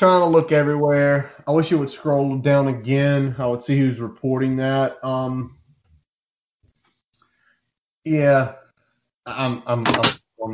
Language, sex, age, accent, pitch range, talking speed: English, male, 30-49, American, 115-135 Hz, 130 wpm